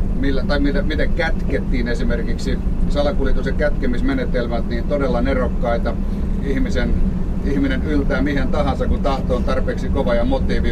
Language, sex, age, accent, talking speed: Finnish, male, 30-49, native, 125 wpm